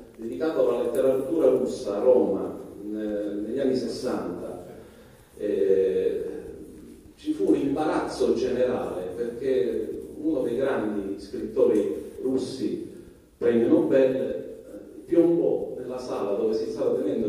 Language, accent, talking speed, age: Italian, native, 110 wpm, 40-59